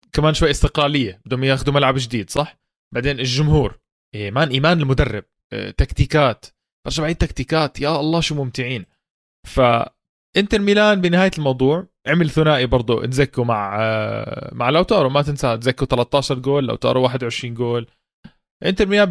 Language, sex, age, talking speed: Arabic, male, 20-39, 135 wpm